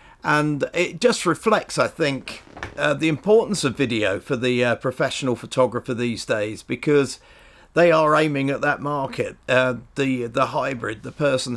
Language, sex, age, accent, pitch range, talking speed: English, male, 40-59, British, 125-150 Hz, 160 wpm